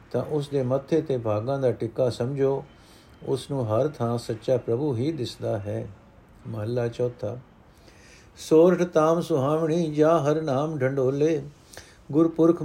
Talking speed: 135 wpm